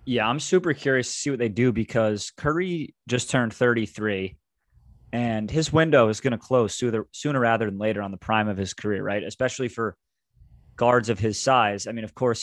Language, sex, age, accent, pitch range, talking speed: English, male, 30-49, American, 105-130 Hz, 205 wpm